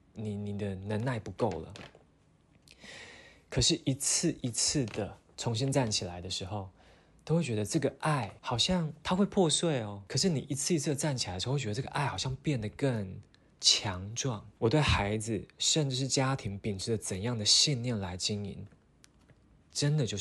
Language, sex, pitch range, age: Chinese, male, 105-145 Hz, 20-39